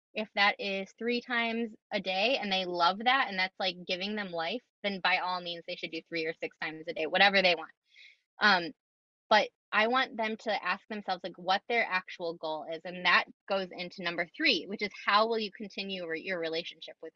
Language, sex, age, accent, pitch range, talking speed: English, female, 20-39, American, 175-220 Hz, 215 wpm